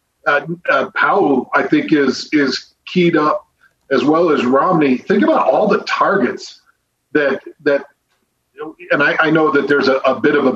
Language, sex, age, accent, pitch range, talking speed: English, male, 40-59, American, 135-190 Hz, 180 wpm